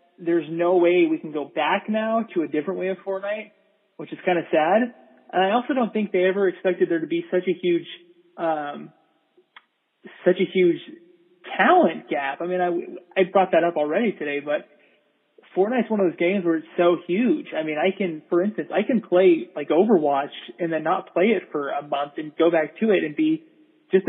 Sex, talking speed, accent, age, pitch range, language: male, 210 wpm, American, 20-39, 155-195 Hz, English